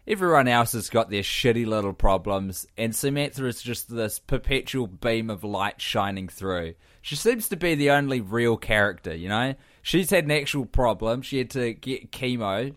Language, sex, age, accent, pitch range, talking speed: English, male, 20-39, Australian, 115-155 Hz, 185 wpm